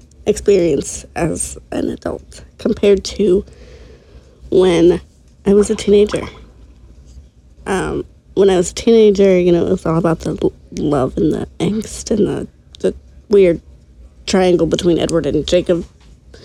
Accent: American